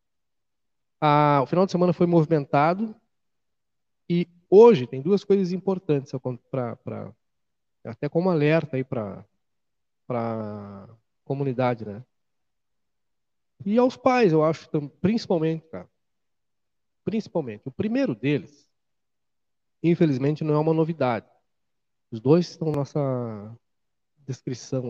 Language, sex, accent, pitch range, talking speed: Portuguese, male, Brazilian, 115-155 Hz, 105 wpm